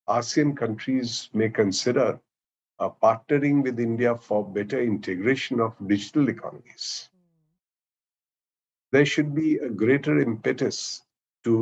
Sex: male